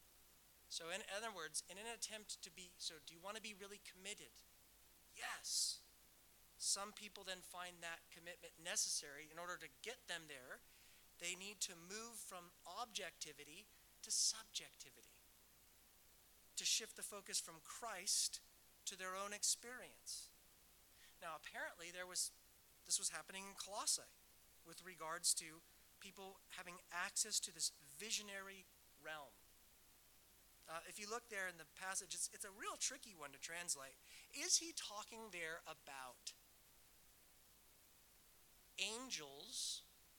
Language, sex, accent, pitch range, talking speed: English, male, American, 155-205 Hz, 135 wpm